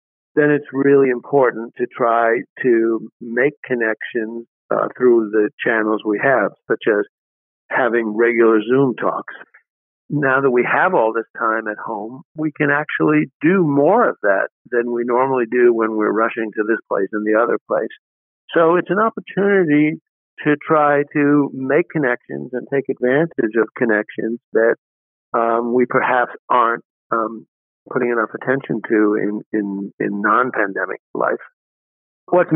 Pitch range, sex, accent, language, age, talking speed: 115-140 Hz, male, American, English, 50-69, 145 wpm